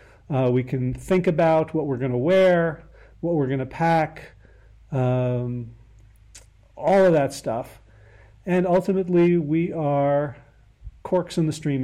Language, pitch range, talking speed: English, 120-160 Hz, 140 wpm